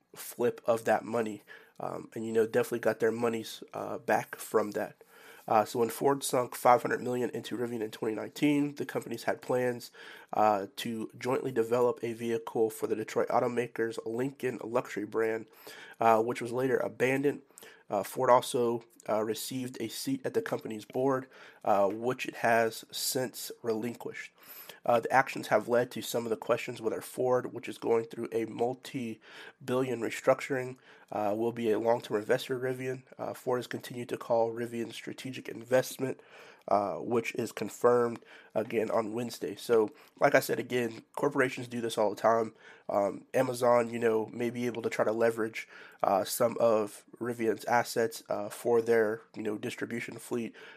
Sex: male